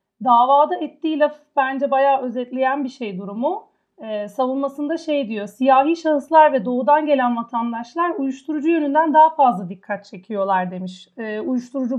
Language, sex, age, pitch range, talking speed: Turkish, female, 40-59, 225-295 Hz, 140 wpm